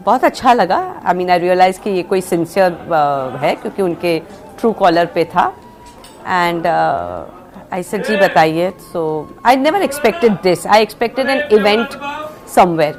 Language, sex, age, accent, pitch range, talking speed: Hindi, female, 50-69, native, 175-220 Hz, 155 wpm